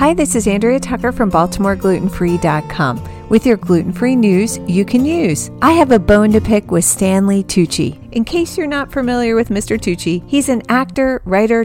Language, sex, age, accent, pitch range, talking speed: English, female, 40-59, American, 190-255 Hz, 180 wpm